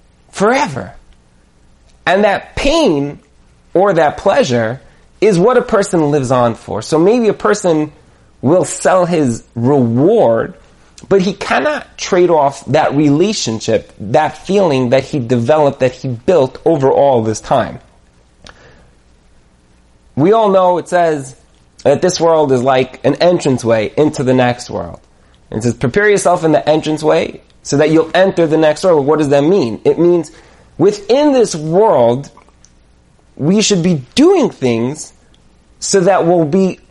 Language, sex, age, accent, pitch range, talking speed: English, male, 30-49, American, 115-180 Hz, 145 wpm